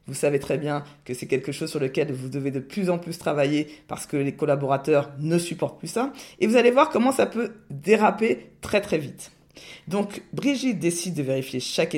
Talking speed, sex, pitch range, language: 210 wpm, female, 145-210 Hz, French